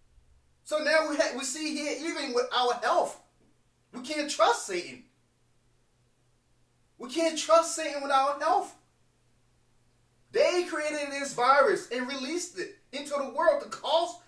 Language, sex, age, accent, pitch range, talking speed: English, male, 20-39, American, 225-315 Hz, 145 wpm